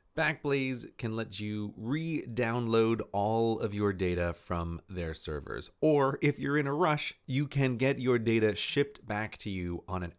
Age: 30-49